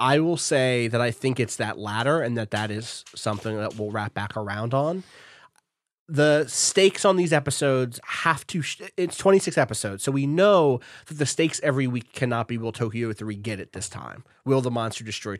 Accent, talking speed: American, 205 wpm